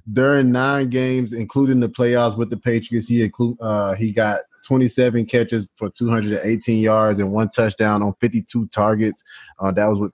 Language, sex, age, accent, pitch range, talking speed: English, male, 20-39, American, 100-115 Hz, 170 wpm